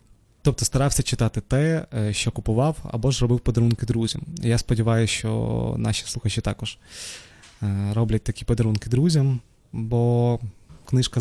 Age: 20-39